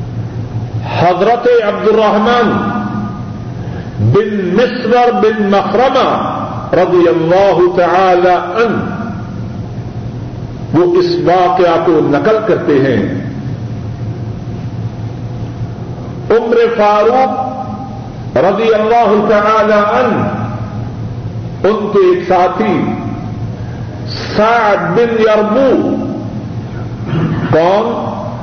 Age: 50-69